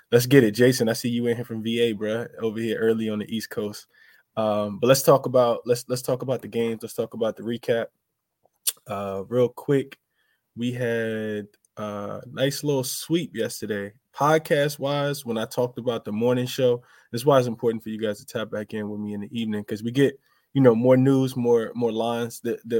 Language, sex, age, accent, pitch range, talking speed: English, male, 20-39, American, 105-125 Hz, 215 wpm